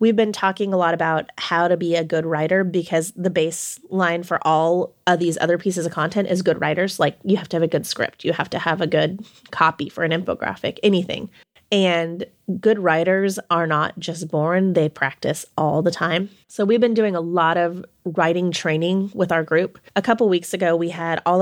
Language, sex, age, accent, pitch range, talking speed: English, female, 20-39, American, 165-195 Hz, 215 wpm